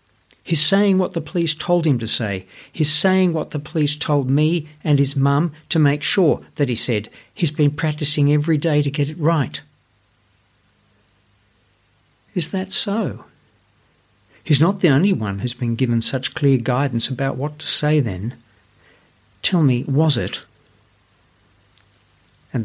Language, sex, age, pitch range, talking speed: English, male, 60-79, 105-155 Hz, 155 wpm